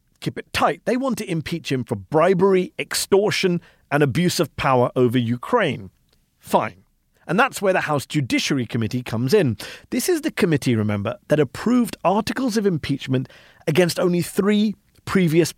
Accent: British